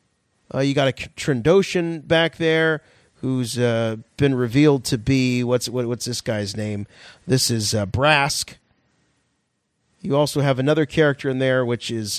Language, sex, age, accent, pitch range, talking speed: English, male, 40-59, American, 115-150 Hz, 155 wpm